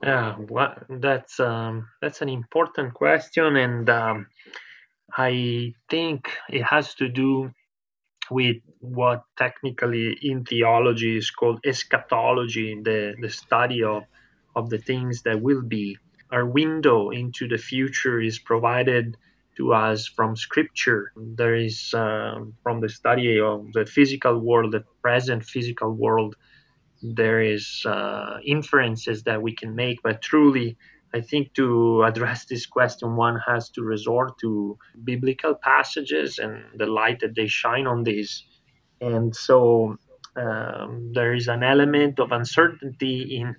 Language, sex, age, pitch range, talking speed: English, male, 20-39, 115-130 Hz, 140 wpm